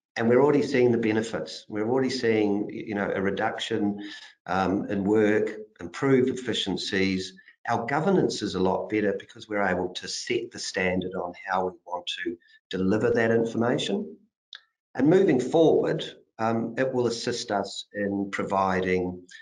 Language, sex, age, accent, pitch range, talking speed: English, male, 50-69, Australian, 95-130 Hz, 145 wpm